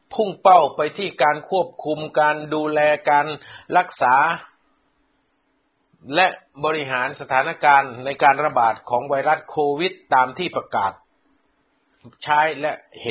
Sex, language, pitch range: male, Thai, 110-155 Hz